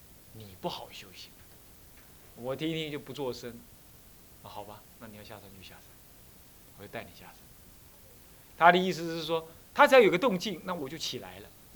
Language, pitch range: Chinese, 105-160 Hz